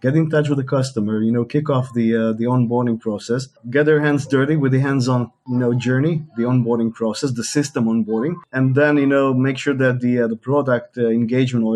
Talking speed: 230 wpm